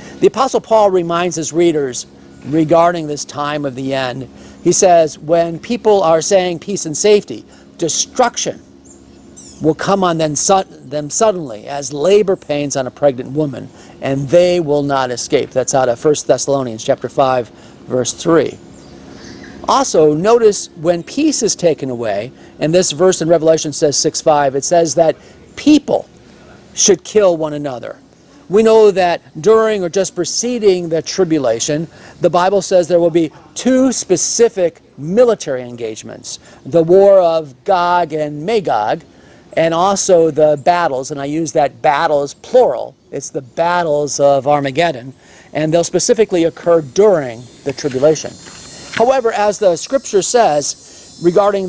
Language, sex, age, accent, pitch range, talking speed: English, male, 50-69, American, 140-190 Hz, 145 wpm